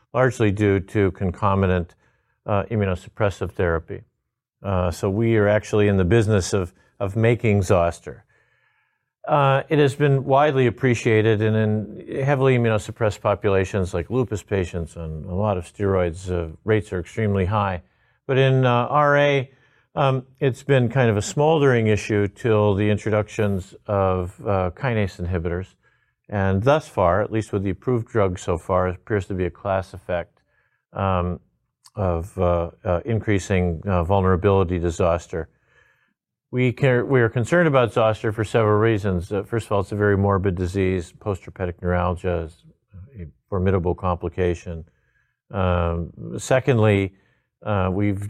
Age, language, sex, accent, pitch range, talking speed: 50-69, English, male, American, 90-115 Hz, 145 wpm